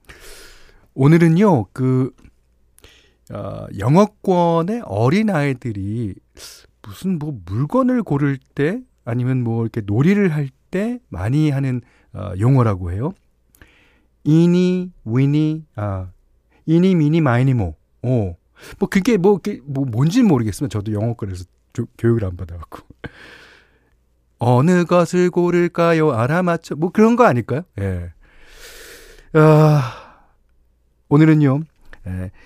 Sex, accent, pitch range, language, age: male, native, 100-170 Hz, Korean, 40-59